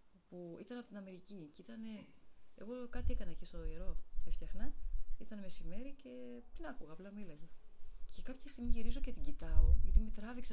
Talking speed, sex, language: 175 wpm, female, Greek